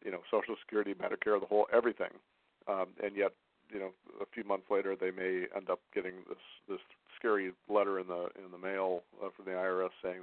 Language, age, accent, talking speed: English, 50-69, American, 210 wpm